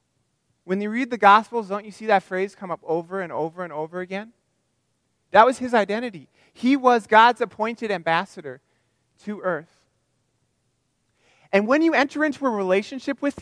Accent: American